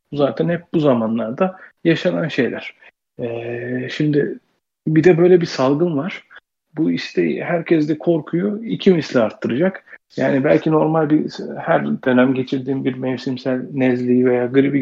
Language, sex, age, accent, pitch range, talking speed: Turkish, male, 40-59, native, 120-165 Hz, 140 wpm